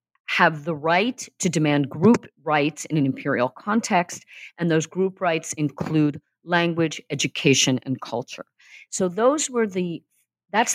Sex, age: female, 50-69